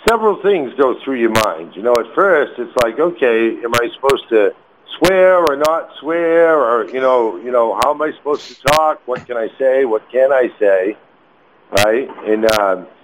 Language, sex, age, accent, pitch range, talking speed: English, male, 60-79, American, 120-155 Hz, 195 wpm